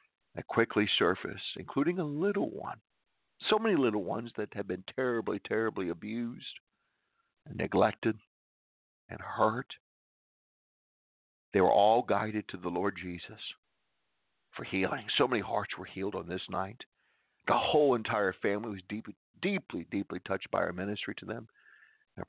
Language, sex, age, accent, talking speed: English, male, 50-69, American, 145 wpm